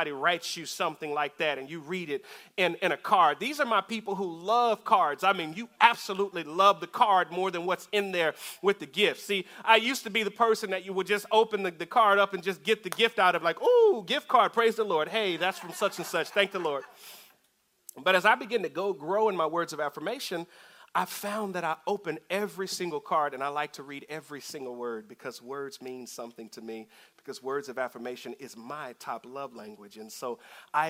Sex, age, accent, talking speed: male, 40-59, American, 235 wpm